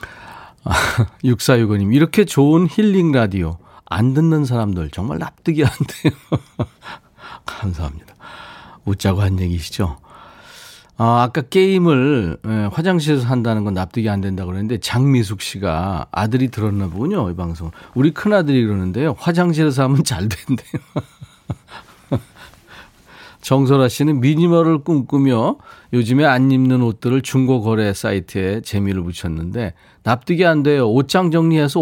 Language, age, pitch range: Korean, 40-59, 105-145 Hz